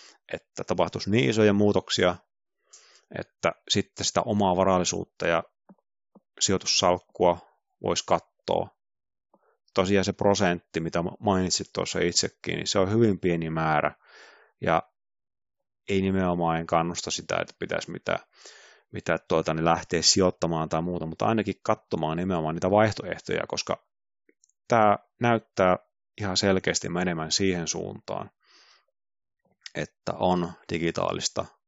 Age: 30-49